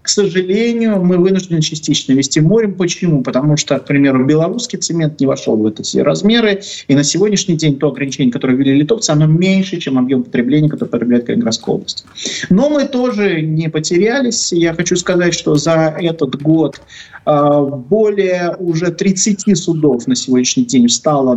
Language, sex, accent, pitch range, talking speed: Russian, male, native, 135-180 Hz, 160 wpm